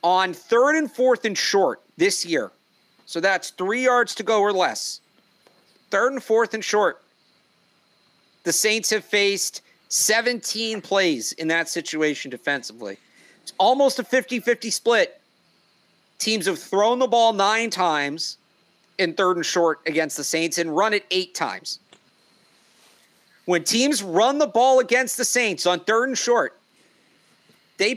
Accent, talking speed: American, 145 wpm